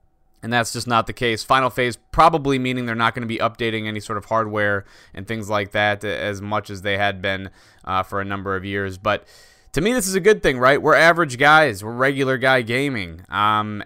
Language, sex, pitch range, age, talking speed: English, male, 100-130 Hz, 20-39, 230 wpm